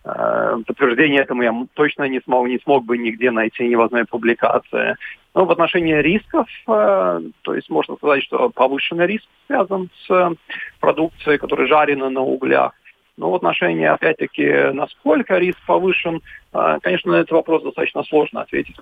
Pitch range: 120-165 Hz